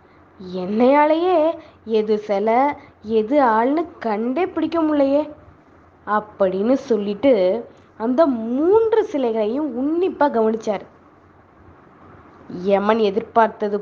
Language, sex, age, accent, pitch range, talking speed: Tamil, female, 20-39, native, 205-280 Hz, 75 wpm